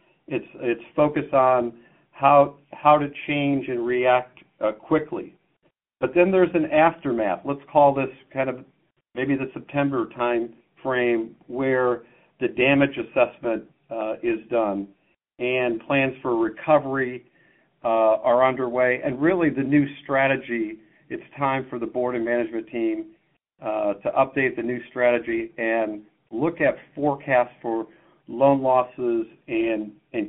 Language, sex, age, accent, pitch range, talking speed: English, male, 50-69, American, 120-145 Hz, 135 wpm